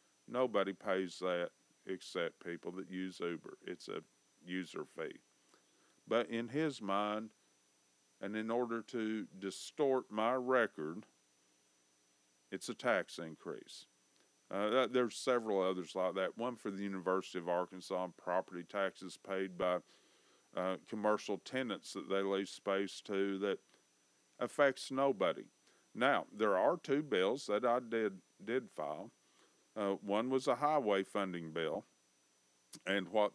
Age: 50-69